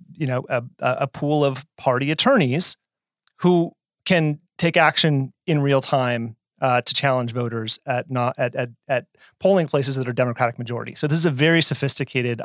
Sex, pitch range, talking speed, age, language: male, 120-150 Hz, 175 wpm, 30-49, English